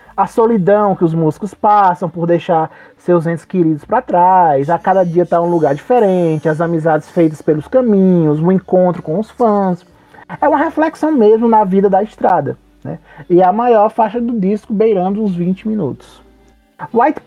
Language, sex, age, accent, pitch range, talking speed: Portuguese, male, 20-39, Brazilian, 175-225 Hz, 175 wpm